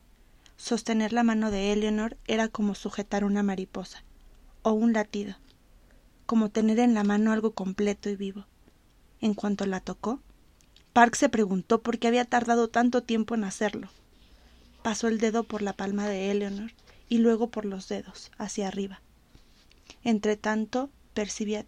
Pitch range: 200-235 Hz